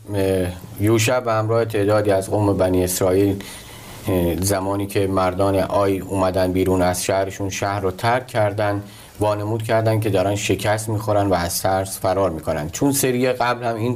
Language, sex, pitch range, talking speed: Persian, male, 100-115 Hz, 155 wpm